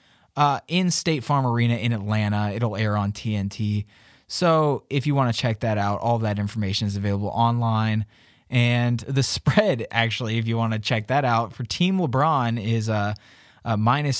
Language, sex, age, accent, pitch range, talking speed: English, male, 20-39, American, 110-135 Hz, 175 wpm